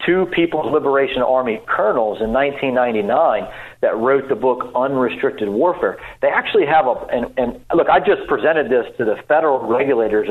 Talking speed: 165 wpm